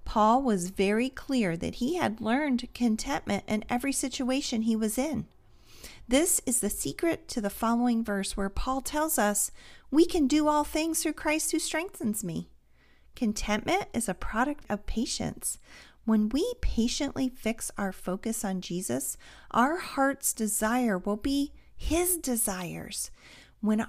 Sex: female